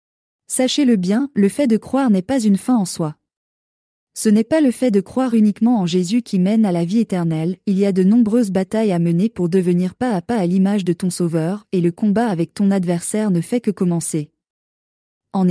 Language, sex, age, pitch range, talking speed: French, female, 20-39, 180-230 Hz, 220 wpm